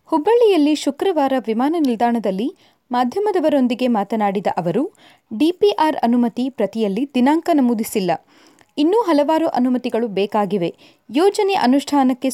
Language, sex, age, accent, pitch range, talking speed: Kannada, female, 20-39, native, 225-310 Hz, 90 wpm